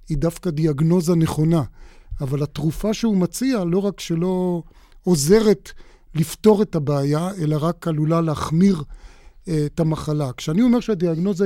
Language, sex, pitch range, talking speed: Hebrew, male, 155-190 Hz, 125 wpm